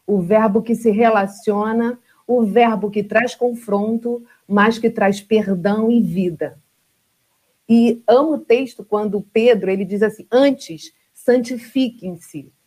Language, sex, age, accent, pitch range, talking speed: Portuguese, female, 40-59, Brazilian, 215-285 Hz, 130 wpm